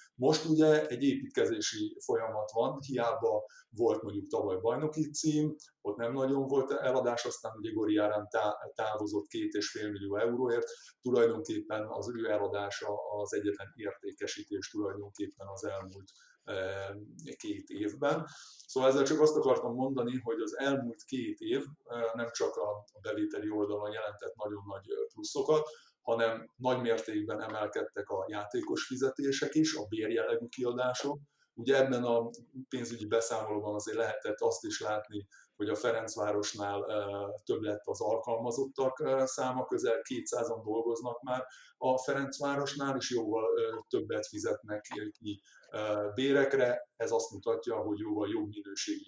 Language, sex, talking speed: Hungarian, male, 130 wpm